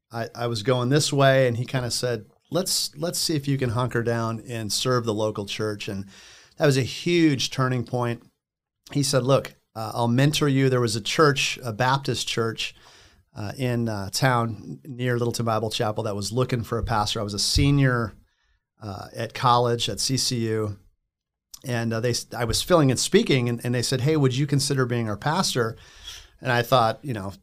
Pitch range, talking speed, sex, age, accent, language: 115-140 Hz, 200 wpm, male, 40-59, American, English